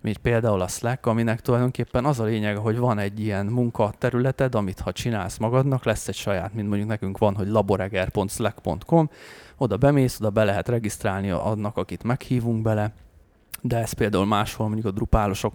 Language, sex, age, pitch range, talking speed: Hungarian, male, 20-39, 100-120 Hz, 165 wpm